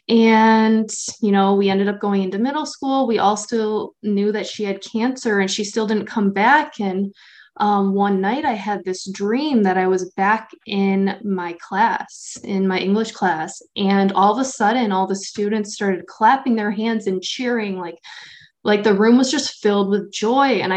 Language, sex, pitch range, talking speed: English, female, 195-230 Hz, 195 wpm